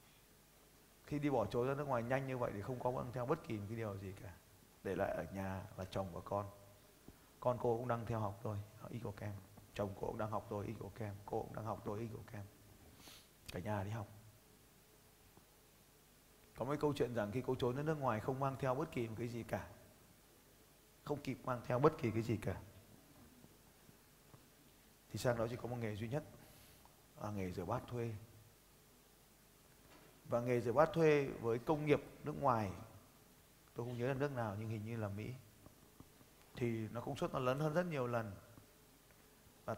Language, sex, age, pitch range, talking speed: Vietnamese, male, 30-49, 105-125 Hz, 190 wpm